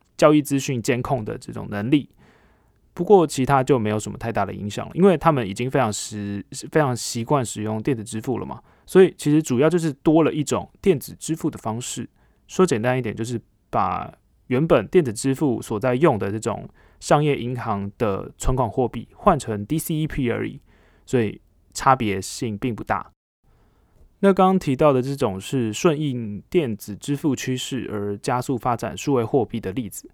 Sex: male